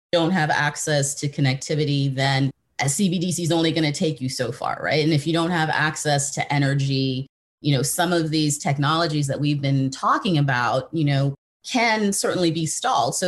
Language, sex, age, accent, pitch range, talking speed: English, female, 30-49, American, 140-170 Hz, 195 wpm